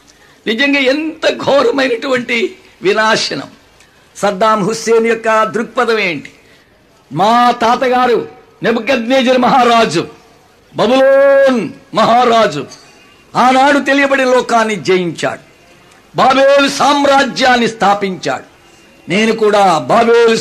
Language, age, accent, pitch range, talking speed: Telugu, 60-79, native, 210-255 Hz, 75 wpm